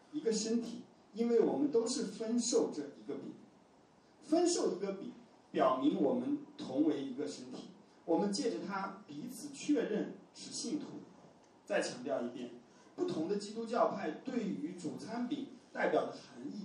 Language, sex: Chinese, male